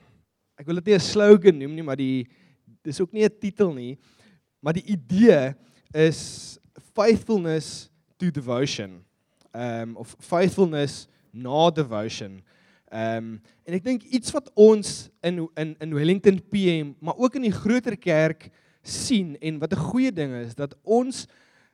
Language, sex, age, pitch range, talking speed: English, male, 20-39, 150-195 Hz, 150 wpm